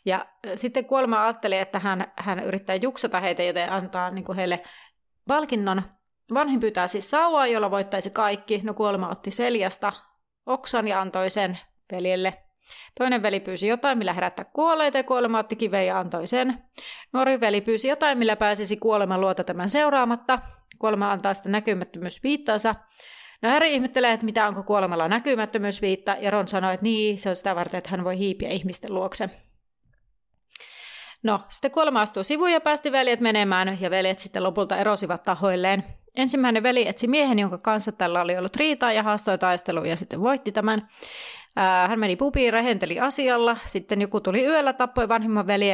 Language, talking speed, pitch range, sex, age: Finnish, 165 wpm, 190-245 Hz, female, 30-49